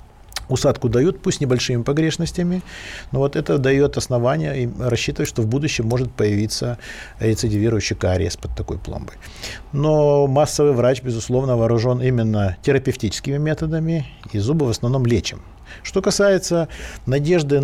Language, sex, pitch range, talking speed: Russian, male, 110-145 Hz, 125 wpm